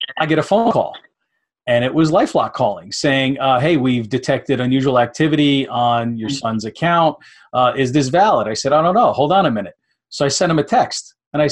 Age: 40-59